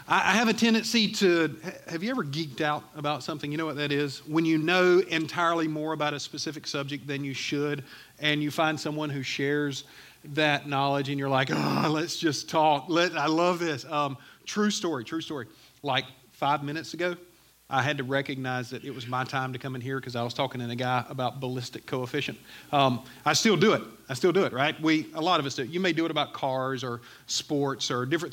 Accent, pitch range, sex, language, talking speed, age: American, 135-160 Hz, male, English, 220 wpm, 40-59